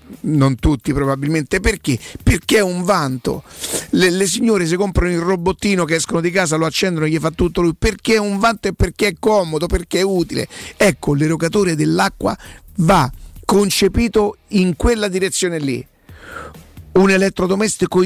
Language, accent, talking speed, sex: Italian, native, 160 wpm, male